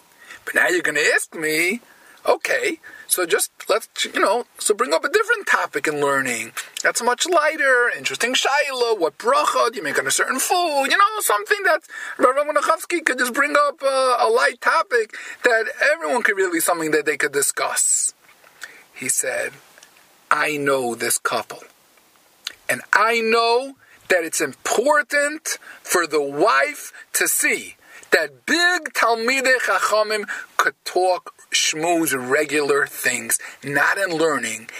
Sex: male